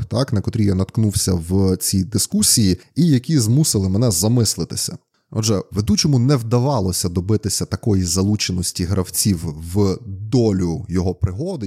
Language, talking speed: Ukrainian, 130 wpm